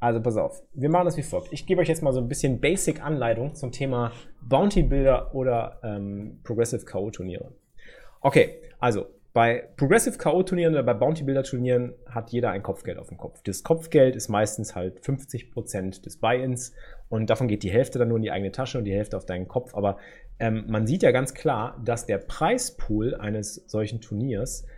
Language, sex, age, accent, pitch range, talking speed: German, male, 30-49, German, 110-155 Hz, 200 wpm